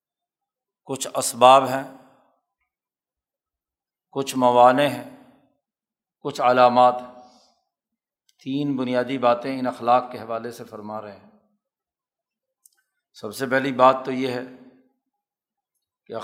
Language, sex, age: Urdu, male, 50-69